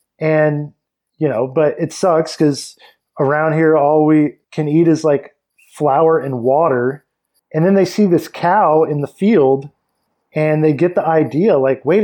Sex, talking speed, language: male, 170 wpm, English